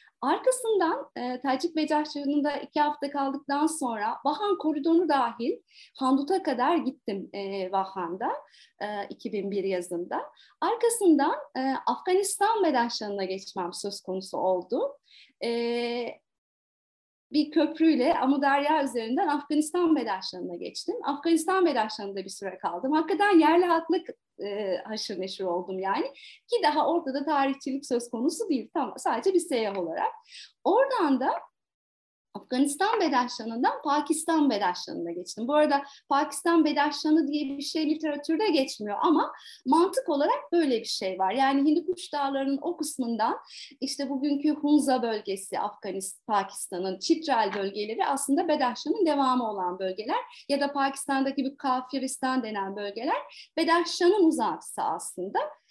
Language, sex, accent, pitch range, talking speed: Turkish, female, native, 230-320 Hz, 120 wpm